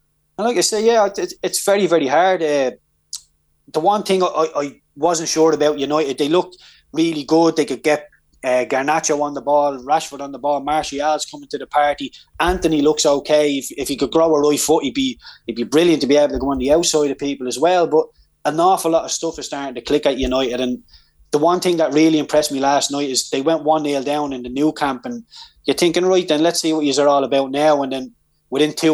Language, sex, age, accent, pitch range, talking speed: English, male, 20-39, Irish, 135-155 Hz, 245 wpm